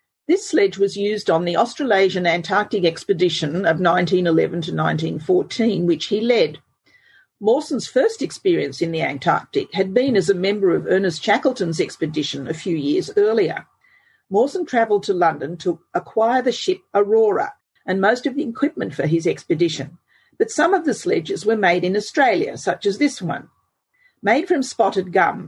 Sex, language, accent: female, English, Australian